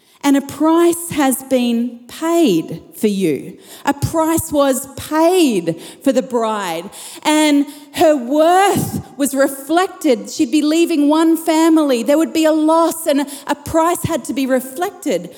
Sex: female